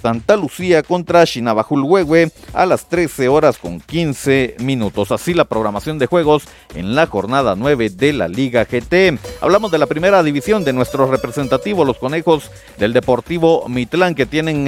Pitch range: 125-165 Hz